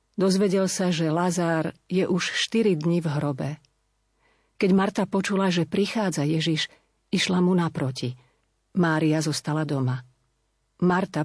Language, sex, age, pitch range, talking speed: Slovak, female, 50-69, 150-185 Hz, 125 wpm